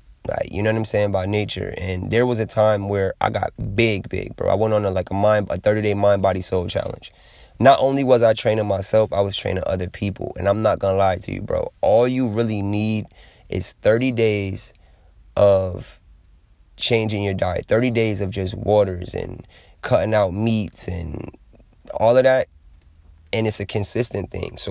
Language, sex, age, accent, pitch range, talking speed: English, male, 20-39, American, 95-115 Hz, 200 wpm